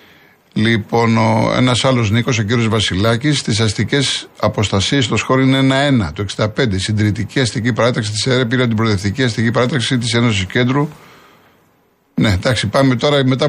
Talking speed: 145 wpm